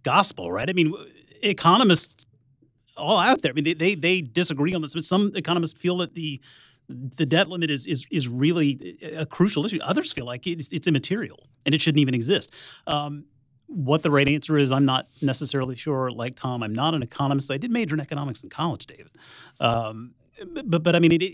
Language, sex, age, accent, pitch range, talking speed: English, male, 30-49, American, 130-175 Hz, 210 wpm